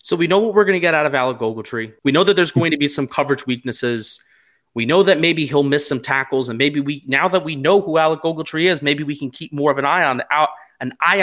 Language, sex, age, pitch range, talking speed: English, male, 30-49, 135-170 Hz, 285 wpm